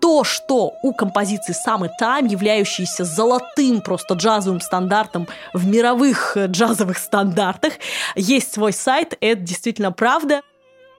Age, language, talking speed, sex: 20-39, Russian, 115 wpm, female